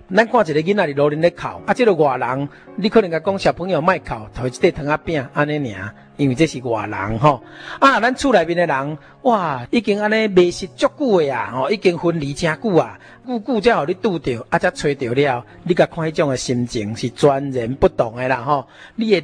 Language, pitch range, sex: Chinese, 135-185 Hz, male